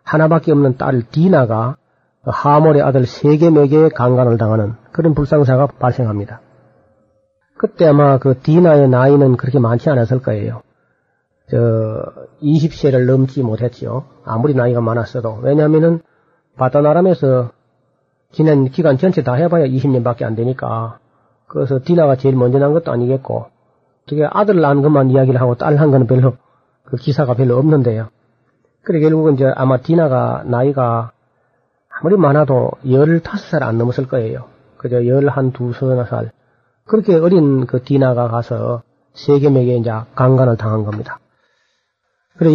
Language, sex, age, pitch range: Korean, male, 40-59, 125-150 Hz